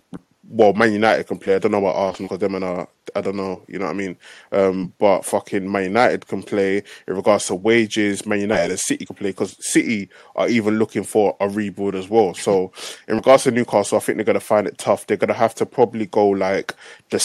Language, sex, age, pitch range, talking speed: English, male, 20-39, 100-115 Hz, 245 wpm